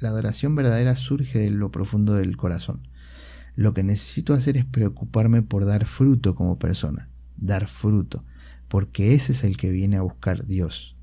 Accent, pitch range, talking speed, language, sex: Argentinian, 90-120 Hz, 170 wpm, Spanish, male